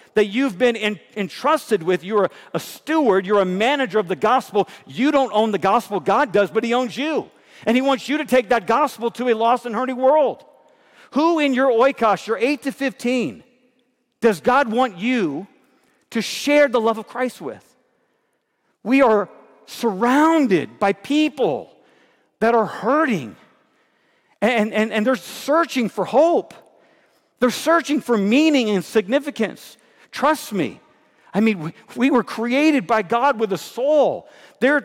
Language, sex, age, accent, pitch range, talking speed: English, male, 50-69, American, 210-270 Hz, 160 wpm